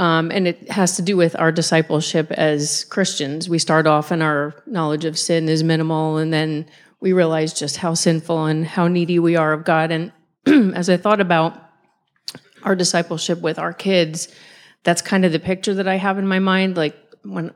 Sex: female